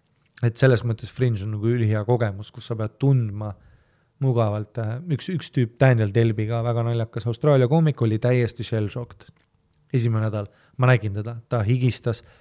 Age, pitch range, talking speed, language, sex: 20-39, 110-140 Hz, 160 wpm, English, male